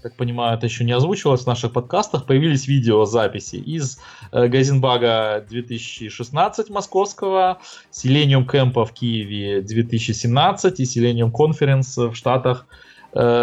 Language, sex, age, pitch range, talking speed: Russian, male, 20-39, 115-140 Hz, 120 wpm